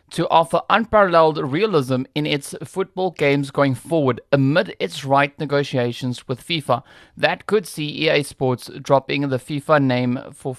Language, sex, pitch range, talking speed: English, male, 140-170 Hz, 145 wpm